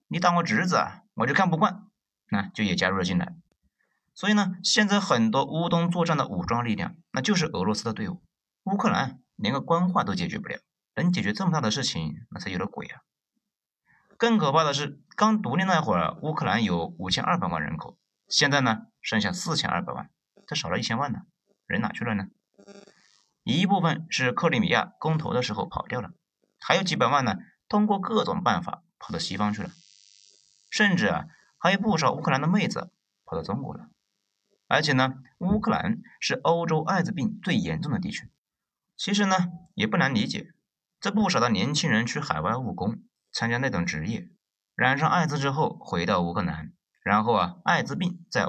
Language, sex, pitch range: Chinese, male, 145-200 Hz